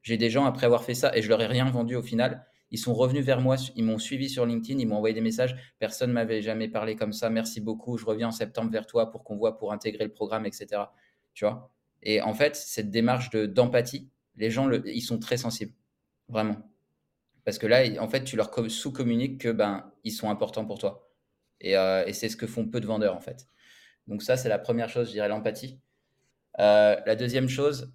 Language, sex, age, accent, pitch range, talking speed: French, male, 20-39, French, 105-120 Hz, 235 wpm